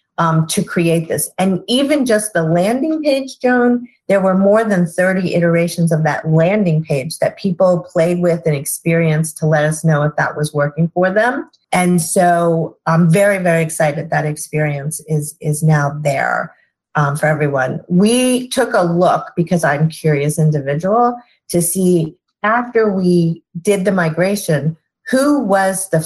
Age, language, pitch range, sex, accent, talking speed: 40-59, English, 160-195 Hz, female, American, 165 wpm